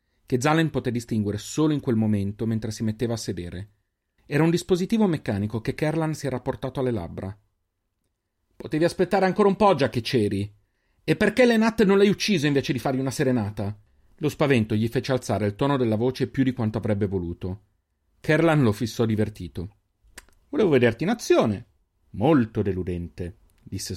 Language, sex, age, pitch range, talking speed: Italian, male, 40-59, 95-135 Hz, 170 wpm